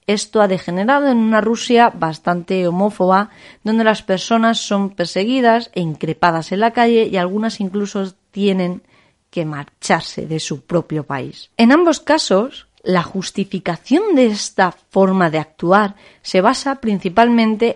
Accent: Spanish